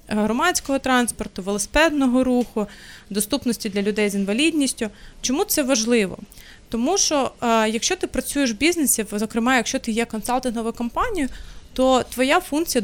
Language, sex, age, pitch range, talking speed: Ukrainian, female, 20-39, 220-270 Hz, 135 wpm